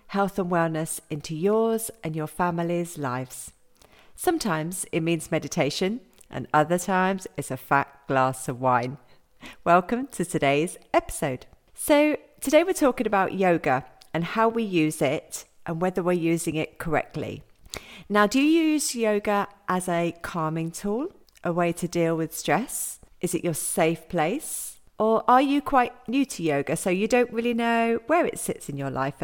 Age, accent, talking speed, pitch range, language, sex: 40-59, British, 165 wpm, 155-215 Hz, English, female